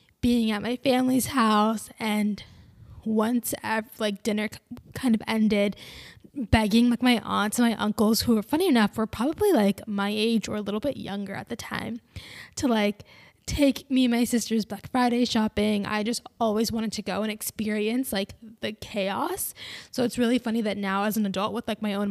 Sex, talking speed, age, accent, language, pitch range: female, 190 wpm, 10-29, American, English, 210-245 Hz